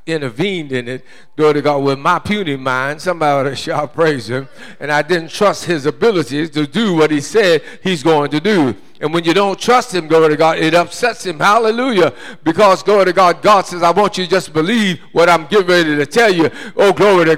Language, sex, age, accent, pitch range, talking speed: English, male, 50-69, American, 145-195 Hz, 230 wpm